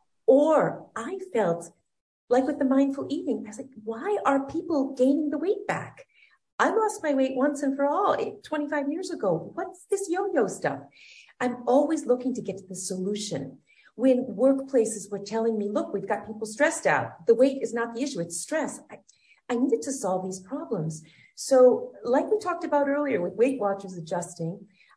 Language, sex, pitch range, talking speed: English, female, 175-265 Hz, 185 wpm